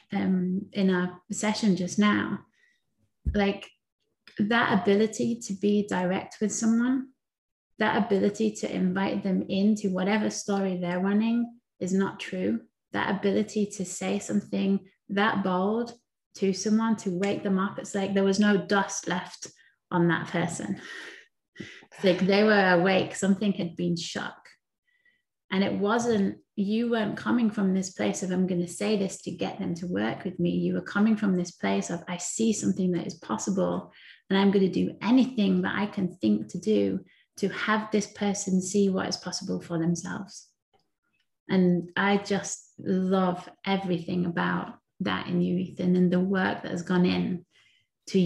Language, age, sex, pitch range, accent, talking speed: English, 20-39, female, 180-205 Hz, British, 165 wpm